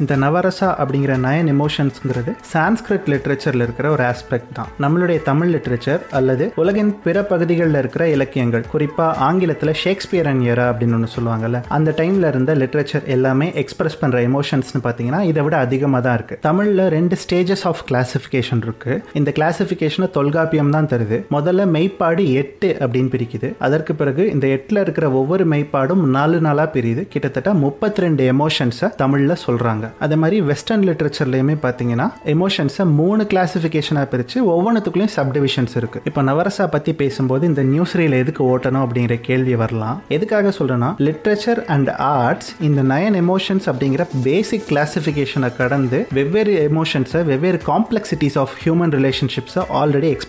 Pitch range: 130-175 Hz